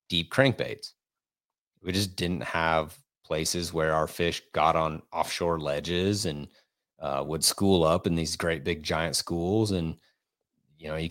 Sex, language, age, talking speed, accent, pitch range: male, English, 30-49, 155 wpm, American, 80-100 Hz